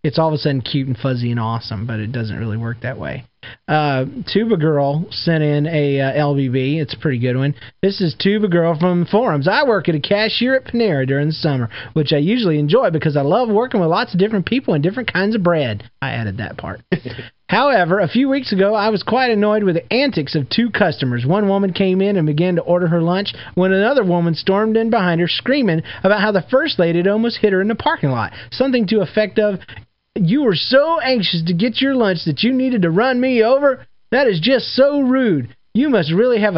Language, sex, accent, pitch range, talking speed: English, male, American, 150-215 Hz, 235 wpm